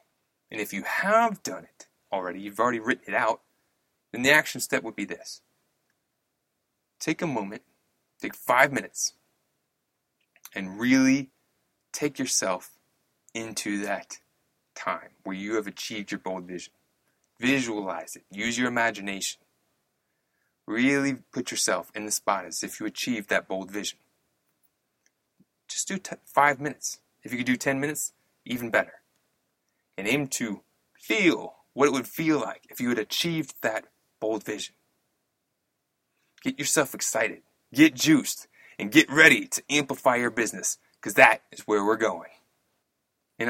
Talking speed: 145 wpm